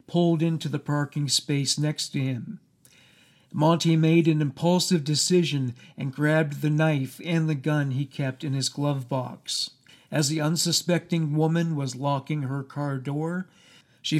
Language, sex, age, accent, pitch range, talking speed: English, male, 50-69, American, 140-165 Hz, 150 wpm